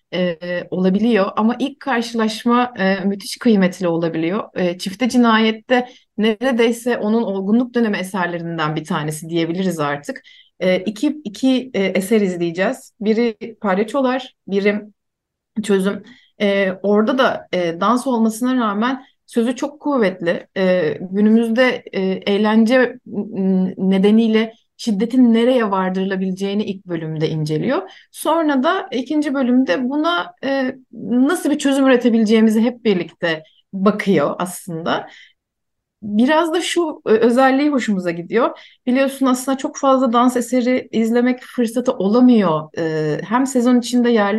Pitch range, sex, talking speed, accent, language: 190-255 Hz, female, 120 wpm, native, Turkish